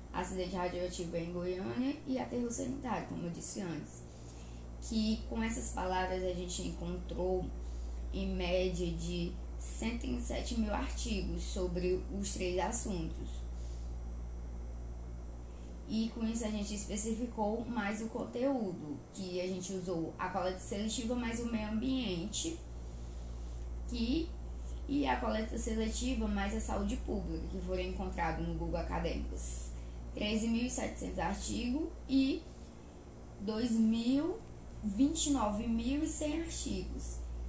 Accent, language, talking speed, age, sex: Brazilian, Portuguese, 110 wpm, 10-29, female